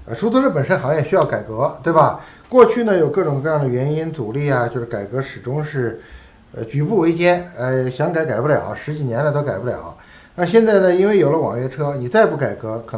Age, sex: 60-79, male